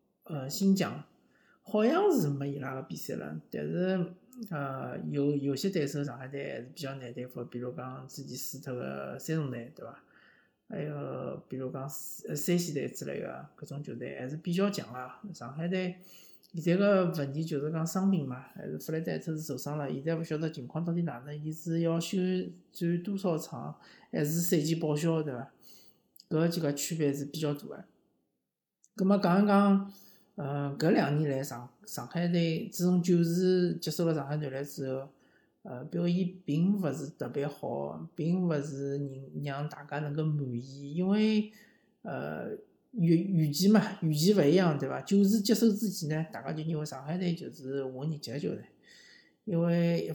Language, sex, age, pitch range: Chinese, male, 50-69, 140-180 Hz